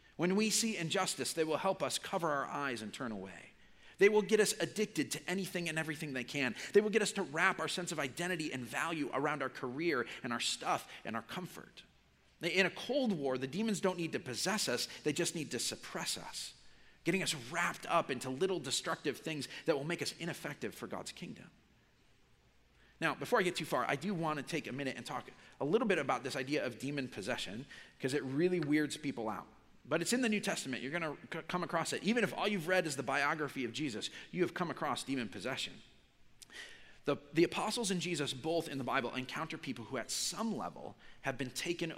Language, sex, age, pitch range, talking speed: English, male, 40-59, 135-185 Hz, 220 wpm